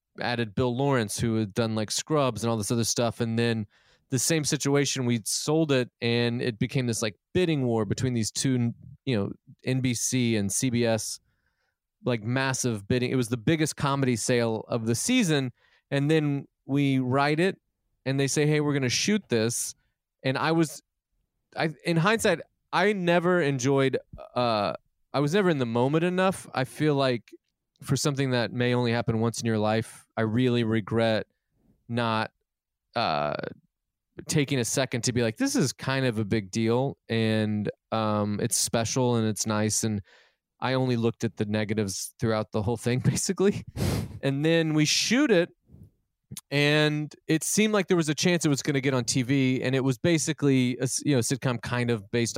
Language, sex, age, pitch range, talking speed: English, male, 30-49, 115-145 Hz, 180 wpm